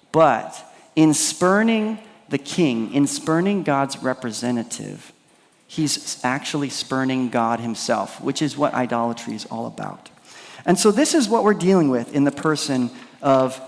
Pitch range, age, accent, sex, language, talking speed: 125-170 Hz, 40-59, American, male, English, 145 wpm